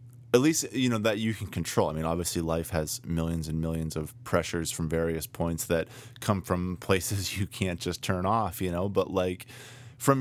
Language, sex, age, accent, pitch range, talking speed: English, male, 20-39, American, 85-120 Hz, 205 wpm